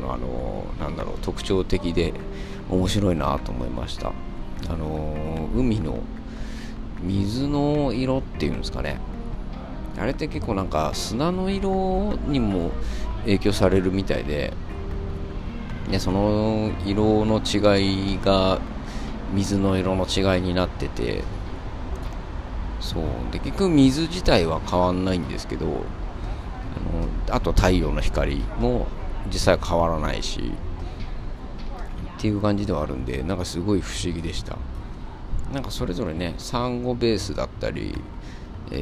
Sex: male